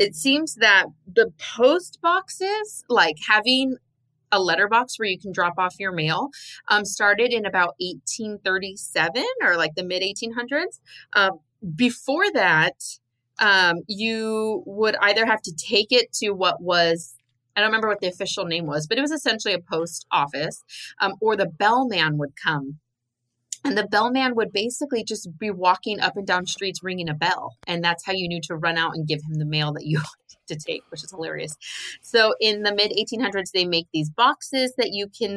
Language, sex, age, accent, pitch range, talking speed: English, female, 20-39, American, 165-225 Hz, 180 wpm